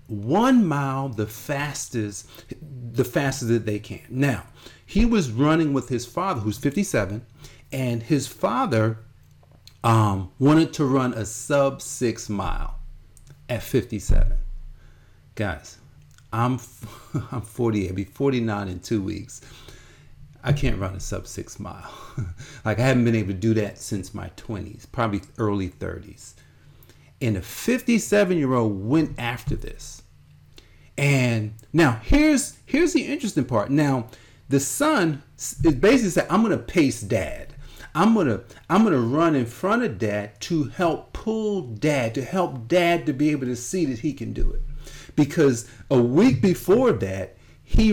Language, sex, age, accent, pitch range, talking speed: English, male, 40-59, American, 105-145 Hz, 150 wpm